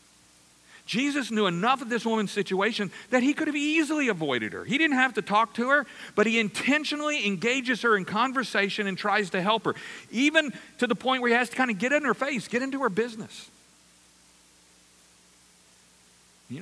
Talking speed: 190 wpm